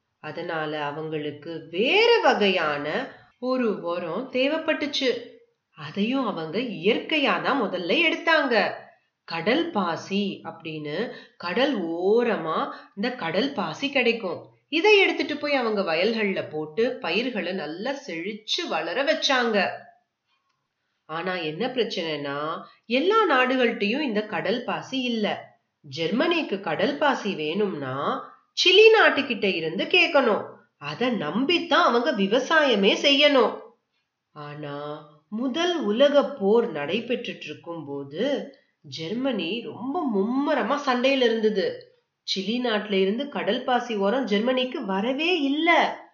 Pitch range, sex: 190-280 Hz, female